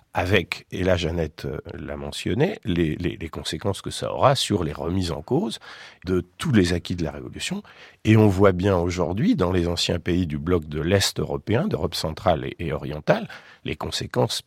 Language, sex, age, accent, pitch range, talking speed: French, male, 50-69, French, 85-105 Hz, 185 wpm